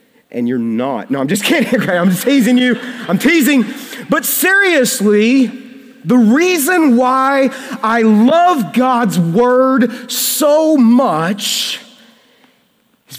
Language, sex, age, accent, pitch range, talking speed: English, male, 40-59, American, 200-255 Hz, 110 wpm